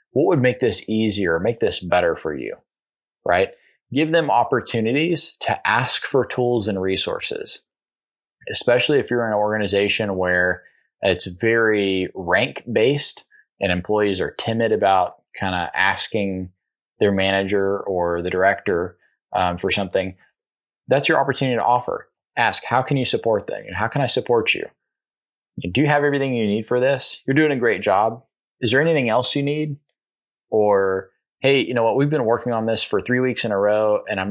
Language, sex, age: English, male, 20-39